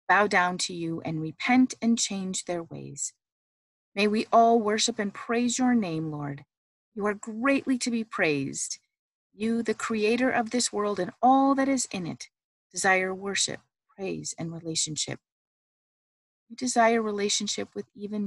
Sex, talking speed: female, 155 wpm